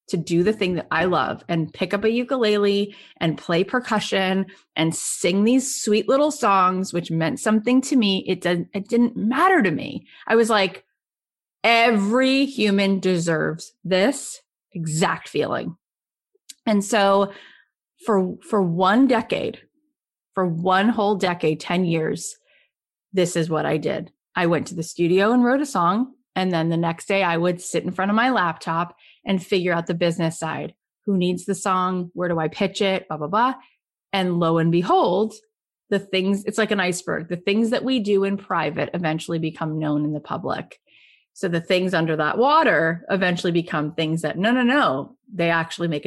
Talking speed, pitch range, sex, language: 180 wpm, 170-220 Hz, female, English